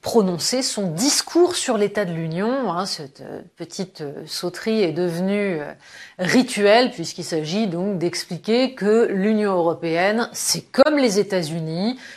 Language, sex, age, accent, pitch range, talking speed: French, female, 30-49, French, 180-255 Hz, 120 wpm